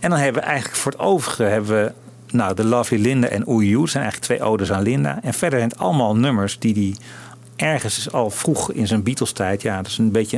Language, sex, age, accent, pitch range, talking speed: Dutch, male, 40-59, Dutch, 100-120 Hz, 245 wpm